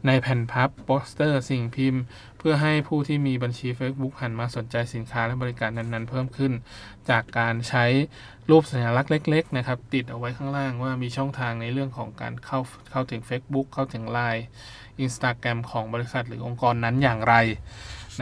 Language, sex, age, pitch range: Thai, male, 20-39, 115-135 Hz